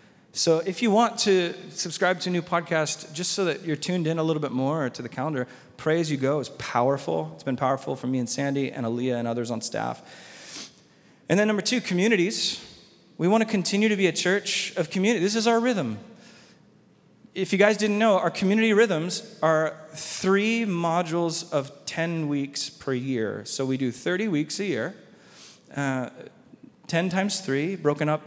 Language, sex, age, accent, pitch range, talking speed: English, male, 30-49, American, 145-195 Hz, 190 wpm